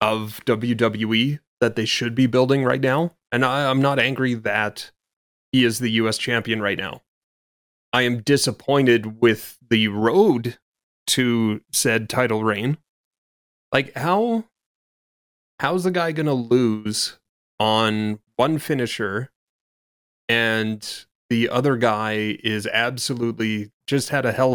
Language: English